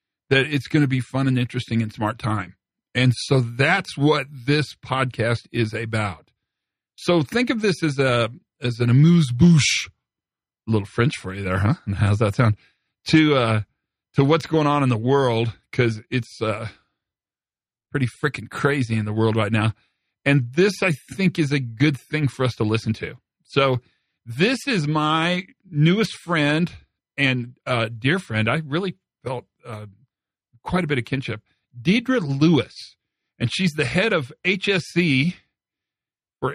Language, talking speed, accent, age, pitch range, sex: English, 165 wpm, American, 40-59, 115-155 Hz, male